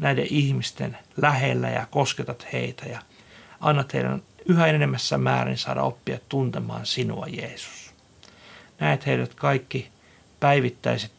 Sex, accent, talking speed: male, native, 115 wpm